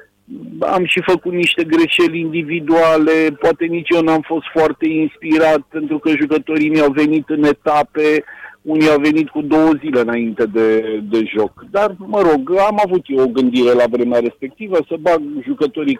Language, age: Romanian, 50-69